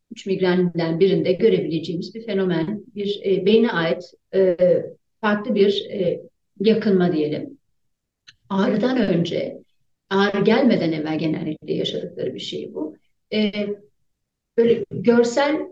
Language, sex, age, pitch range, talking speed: Turkish, female, 40-59, 185-230 Hz, 110 wpm